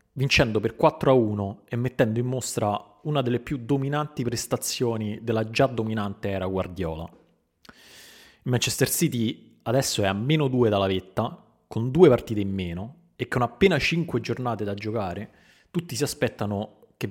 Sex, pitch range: male, 105-140 Hz